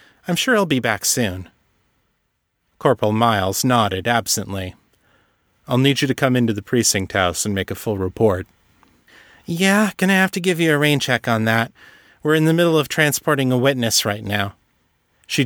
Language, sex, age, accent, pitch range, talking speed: English, male, 30-49, American, 100-135 Hz, 180 wpm